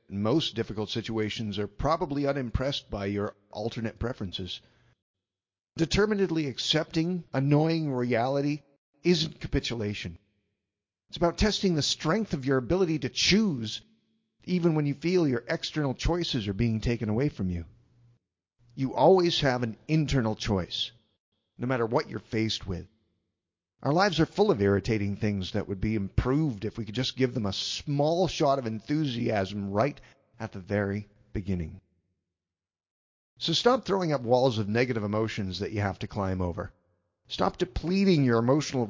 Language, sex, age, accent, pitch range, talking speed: English, male, 50-69, American, 100-150 Hz, 150 wpm